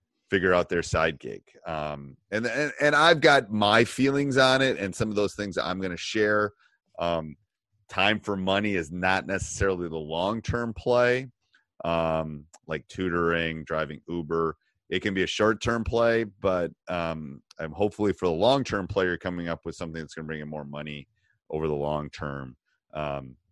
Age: 30-49